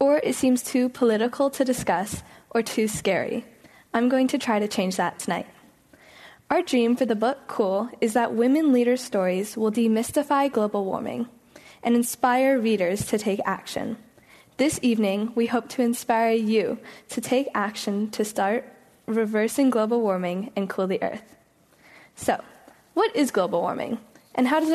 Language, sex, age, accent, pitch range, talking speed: English, female, 10-29, American, 210-265 Hz, 160 wpm